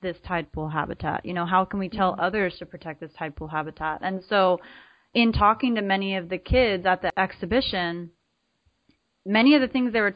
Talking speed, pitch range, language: 205 wpm, 180-230 Hz, English